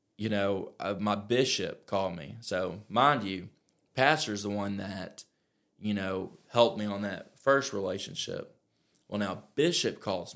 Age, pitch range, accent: 20-39, 100-110 Hz, American